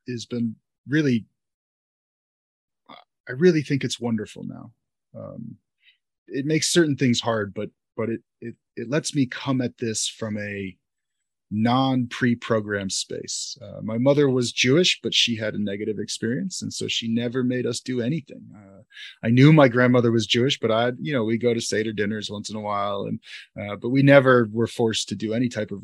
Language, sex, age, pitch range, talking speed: English, male, 30-49, 110-135 Hz, 190 wpm